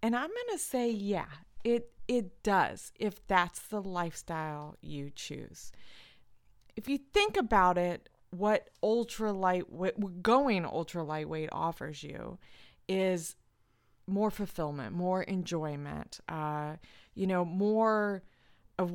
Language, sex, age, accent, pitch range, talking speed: English, female, 30-49, American, 145-195 Hz, 115 wpm